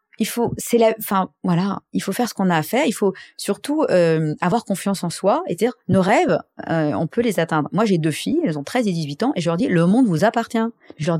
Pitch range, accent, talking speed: 165-225 Hz, French, 275 wpm